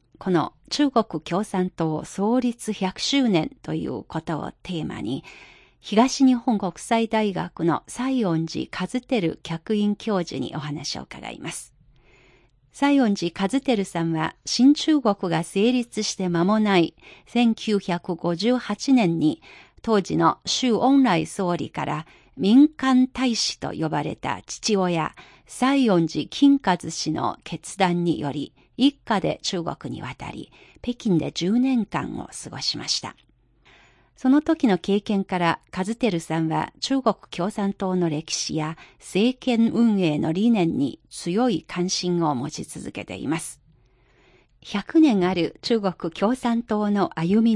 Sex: female